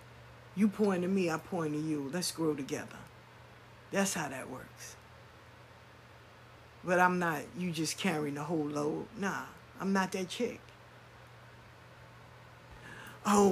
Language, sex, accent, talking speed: English, female, American, 135 wpm